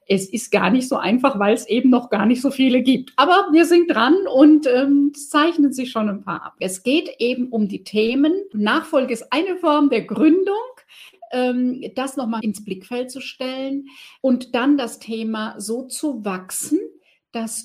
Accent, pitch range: German, 200-280 Hz